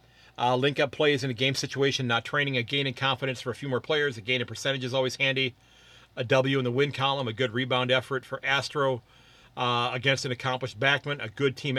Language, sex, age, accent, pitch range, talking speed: English, male, 40-59, American, 125-140 Hz, 230 wpm